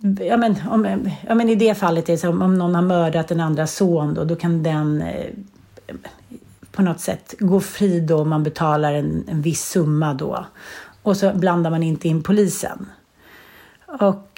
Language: Swedish